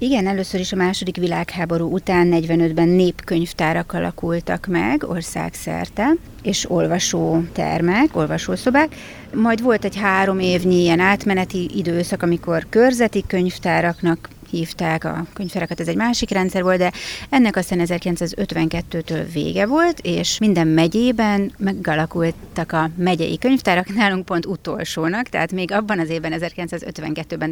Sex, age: female, 30-49